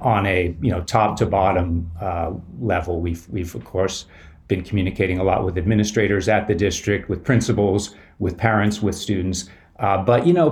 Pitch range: 100-135 Hz